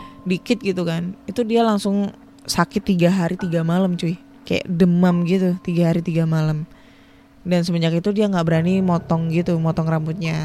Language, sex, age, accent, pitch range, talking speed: Indonesian, female, 20-39, native, 175-230 Hz, 165 wpm